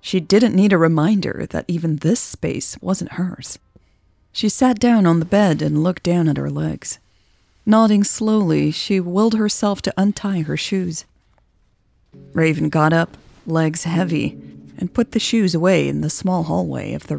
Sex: female